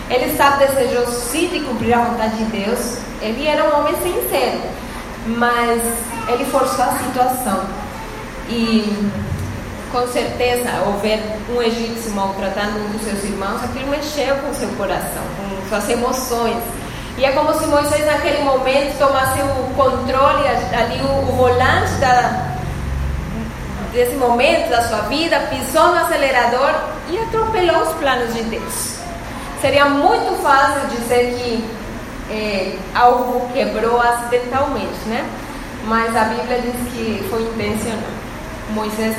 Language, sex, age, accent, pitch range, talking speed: Portuguese, female, 10-29, Brazilian, 225-275 Hz, 130 wpm